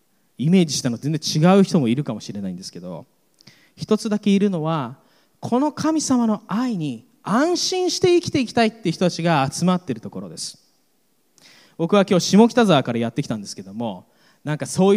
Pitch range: 140-215 Hz